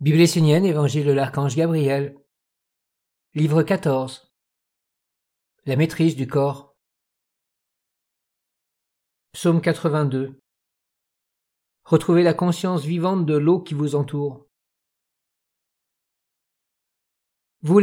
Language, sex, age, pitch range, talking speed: French, male, 50-69, 145-175 Hz, 75 wpm